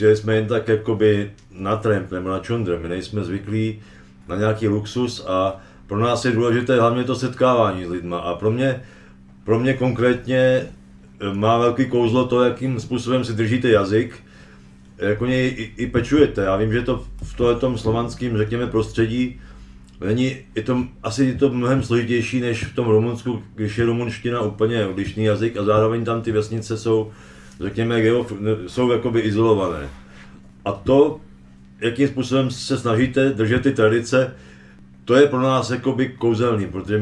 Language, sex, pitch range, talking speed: Czech, male, 105-125 Hz, 155 wpm